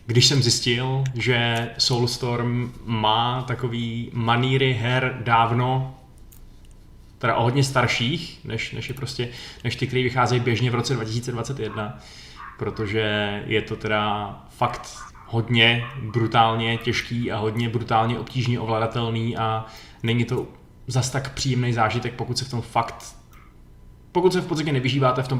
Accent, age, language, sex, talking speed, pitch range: native, 20-39, Czech, male, 135 wpm, 110-125 Hz